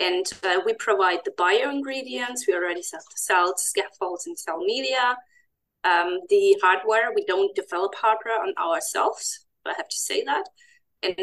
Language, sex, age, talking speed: English, female, 20-39, 160 wpm